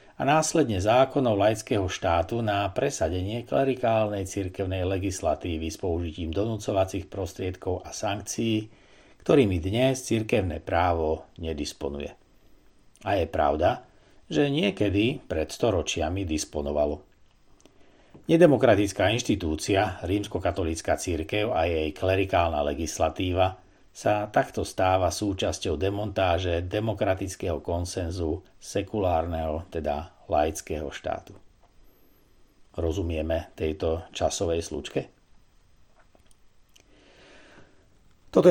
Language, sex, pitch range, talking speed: Slovak, male, 85-105 Hz, 85 wpm